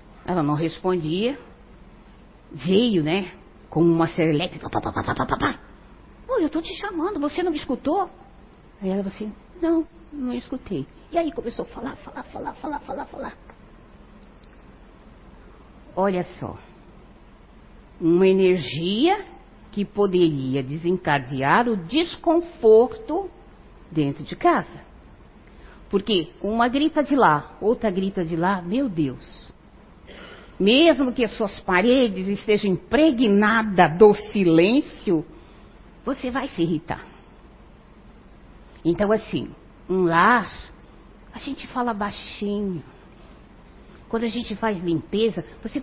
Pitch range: 180-250 Hz